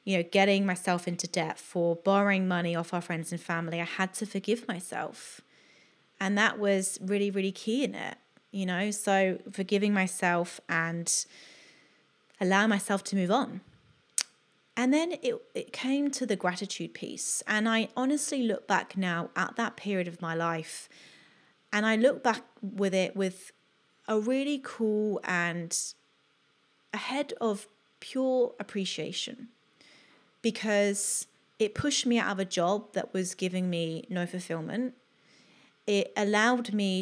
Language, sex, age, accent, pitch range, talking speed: English, female, 30-49, British, 180-230 Hz, 150 wpm